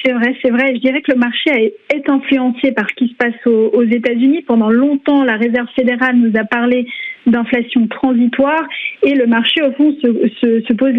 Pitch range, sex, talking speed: 230-275 Hz, female, 195 wpm